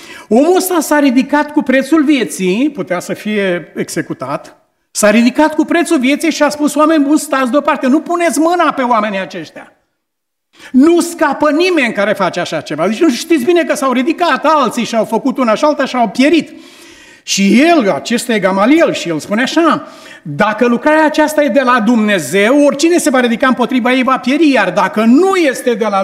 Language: Romanian